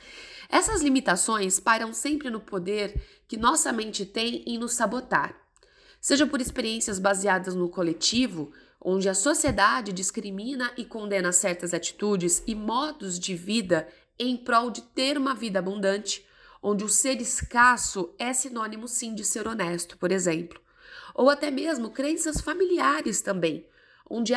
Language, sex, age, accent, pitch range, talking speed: Portuguese, female, 20-39, Brazilian, 195-255 Hz, 140 wpm